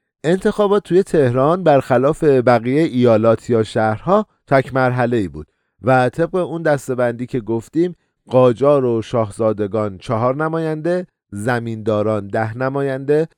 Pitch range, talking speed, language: 105-150 Hz, 110 wpm, Persian